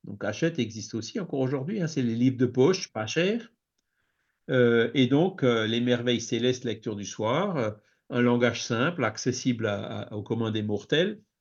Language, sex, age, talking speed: French, male, 50-69, 185 wpm